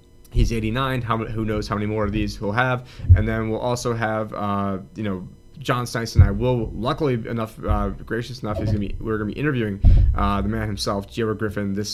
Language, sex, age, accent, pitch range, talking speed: English, male, 30-49, American, 105-120 Hz, 225 wpm